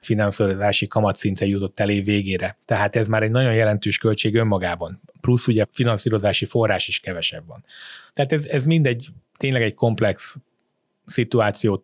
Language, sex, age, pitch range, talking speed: Hungarian, male, 30-49, 105-125 Hz, 140 wpm